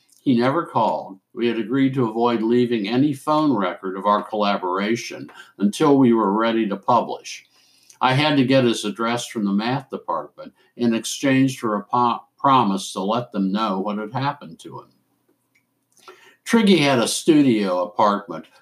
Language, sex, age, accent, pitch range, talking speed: English, male, 60-79, American, 105-140 Hz, 160 wpm